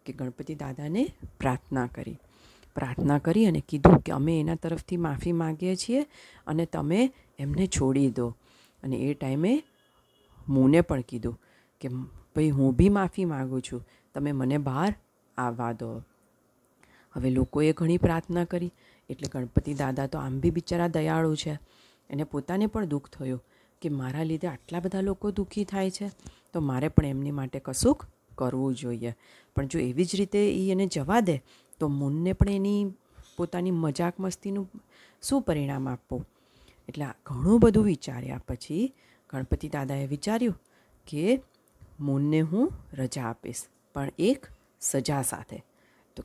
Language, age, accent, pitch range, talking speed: Gujarati, 40-59, native, 130-185 Hz, 125 wpm